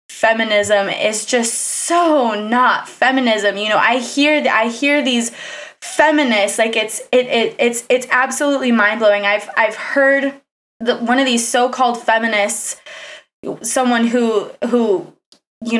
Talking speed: 135 wpm